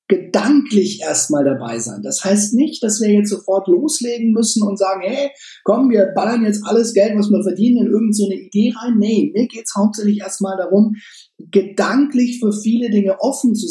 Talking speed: 185 wpm